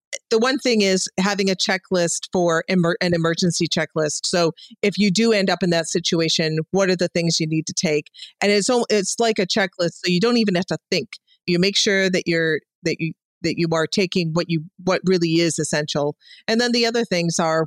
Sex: female